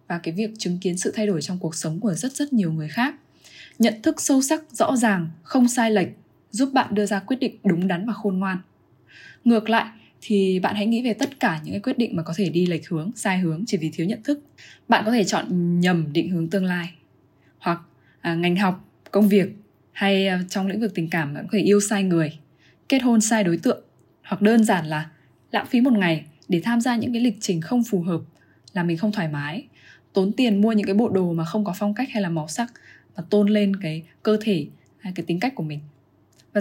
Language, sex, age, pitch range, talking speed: Vietnamese, female, 10-29, 170-230 Hz, 245 wpm